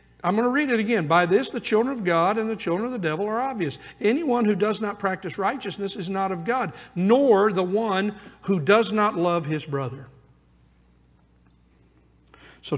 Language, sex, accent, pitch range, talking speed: English, male, American, 135-190 Hz, 190 wpm